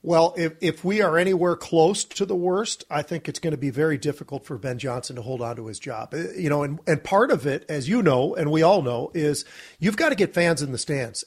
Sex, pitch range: male, 140-170 Hz